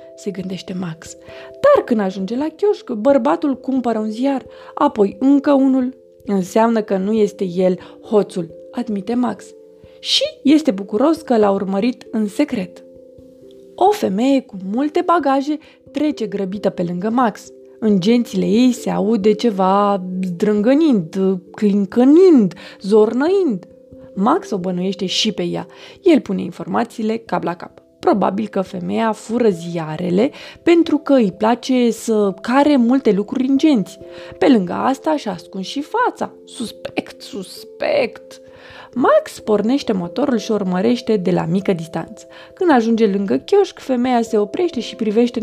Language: Romanian